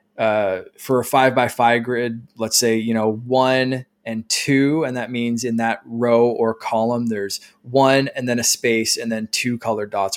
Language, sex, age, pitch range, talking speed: English, male, 20-39, 115-145 Hz, 195 wpm